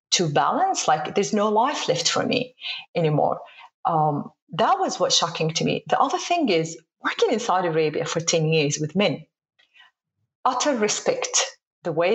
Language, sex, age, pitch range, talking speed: English, female, 30-49, 170-250 Hz, 170 wpm